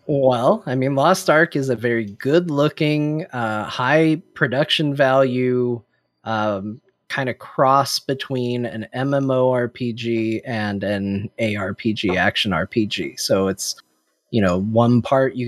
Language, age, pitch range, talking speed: English, 30-49, 110-145 Hz, 130 wpm